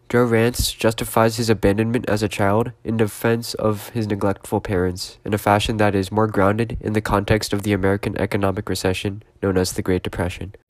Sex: male